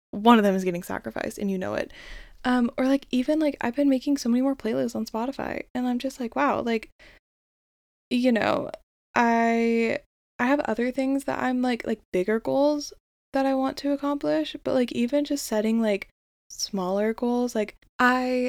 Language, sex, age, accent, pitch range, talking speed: English, female, 10-29, American, 215-265 Hz, 190 wpm